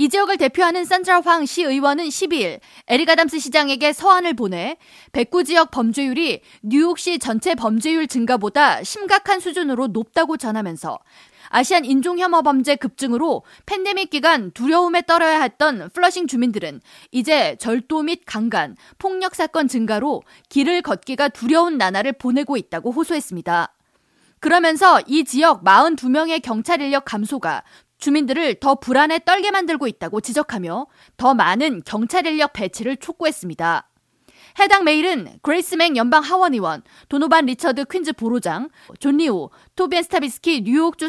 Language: Korean